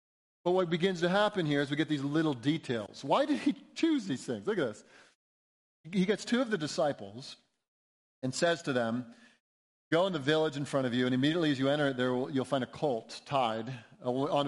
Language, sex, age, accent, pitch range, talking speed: English, male, 40-59, American, 135-195 Hz, 210 wpm